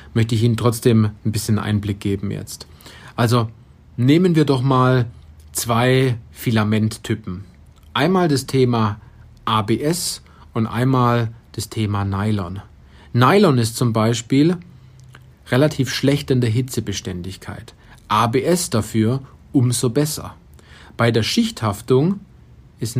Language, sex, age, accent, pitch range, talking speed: German, male, 40-59, German, 105-135 Hz, 110 wpm